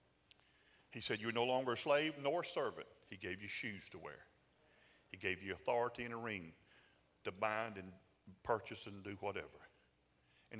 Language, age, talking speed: English, 50-69, 175 wpm